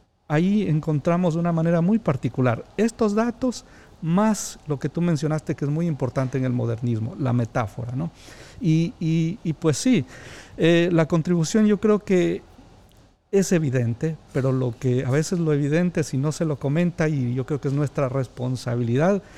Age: 50-69